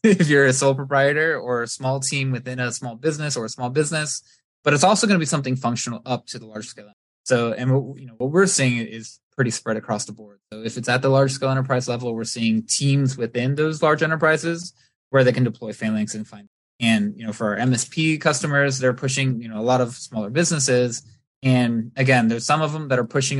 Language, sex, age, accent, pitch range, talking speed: English, male, 20-39, American, 110-135 Hz, 230 wpm